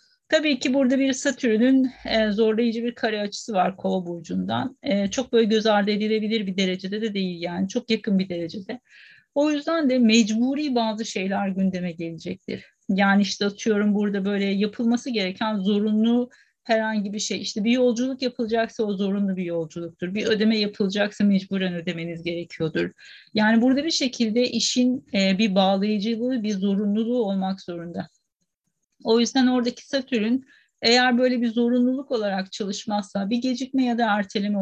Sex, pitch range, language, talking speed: female, 195-245 Hz, Turkish, 145 wpm